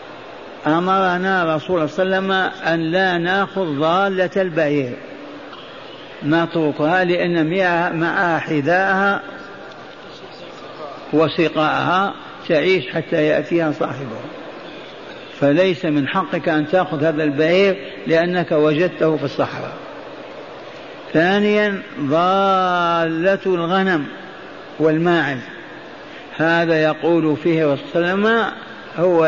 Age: 50-69